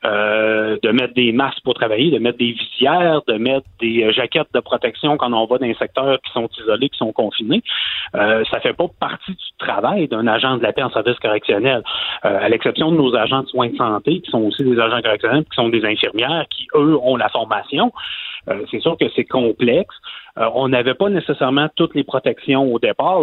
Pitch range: 115-155 Hz